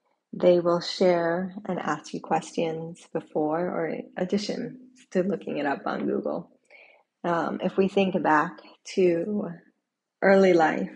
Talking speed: 135 wpm